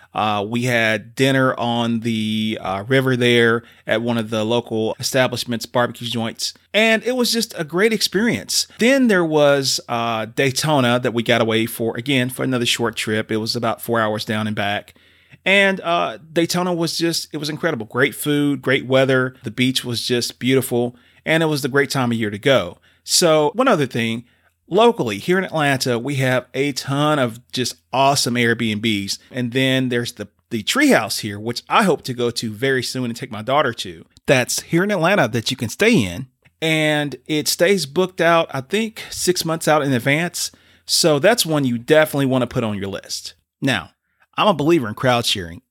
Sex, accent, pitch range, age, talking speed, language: male, American, 115-155 Hz, 30-49, 195 wpm, English